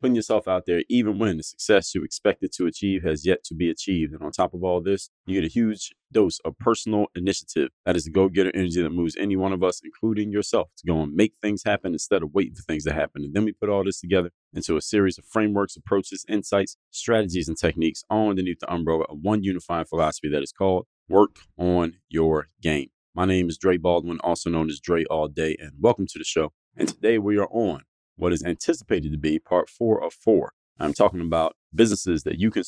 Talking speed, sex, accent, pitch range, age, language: 235 wpm, male, American, 85-100 Hz, 30-49, English